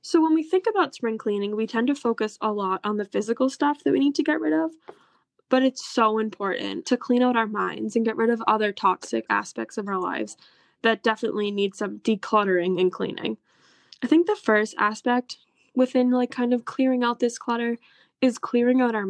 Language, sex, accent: English, female, American